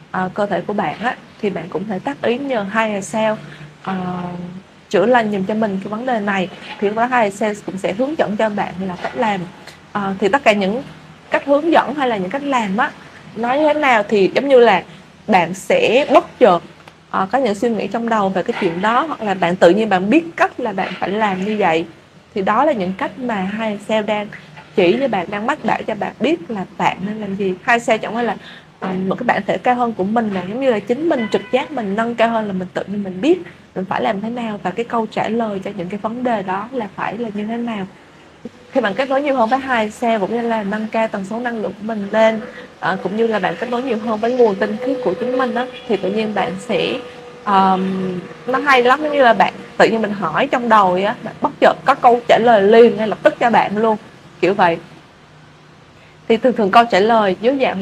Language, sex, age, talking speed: Vietnamese, female, 20-39, 255 wpm